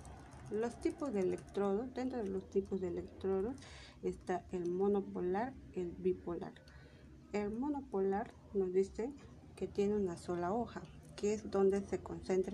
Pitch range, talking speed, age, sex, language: 180-205 Hz, 145 wpm, 40-59, female, Spanish